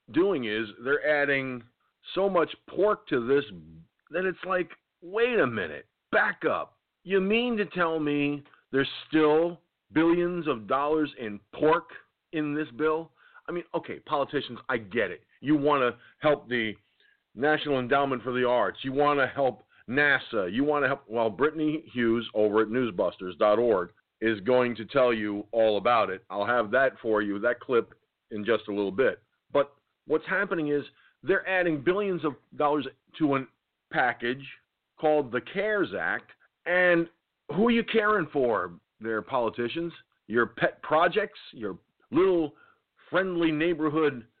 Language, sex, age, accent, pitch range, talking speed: English, male, 50-69, American, 125-175 Hz, 155 wpm